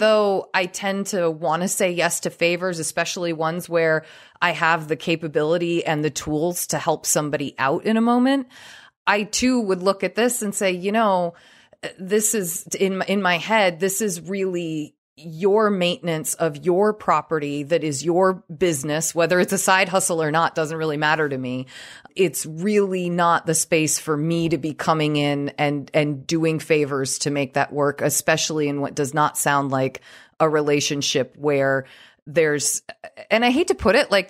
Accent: American